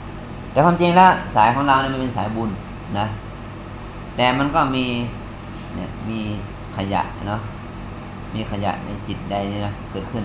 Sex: male